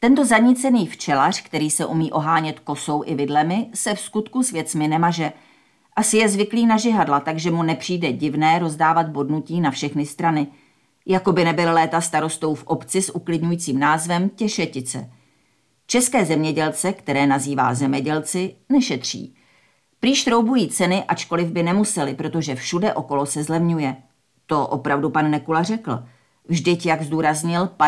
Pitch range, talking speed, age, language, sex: 145-180 Hz, 140 wpm, 40-59, Czech, female